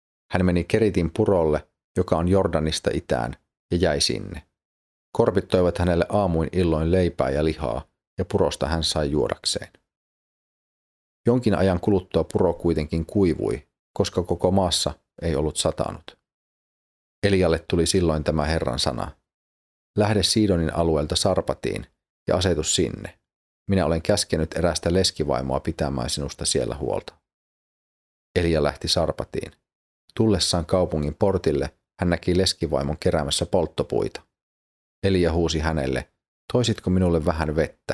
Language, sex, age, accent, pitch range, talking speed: Finnish, male, 40-59, native, 80-100 Hz, 120 wpm